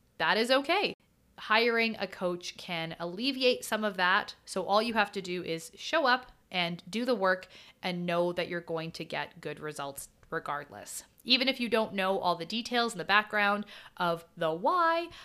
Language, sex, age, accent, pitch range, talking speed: English, female, 30-49, American, 175-230 Hz, 190 wpm